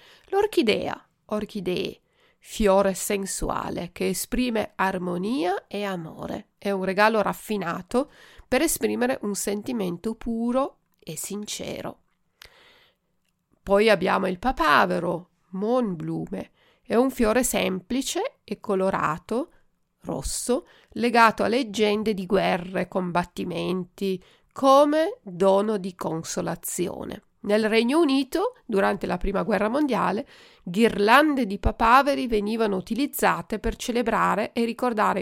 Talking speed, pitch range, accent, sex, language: 100 wpm, 190-245 Hz, native, female, Italian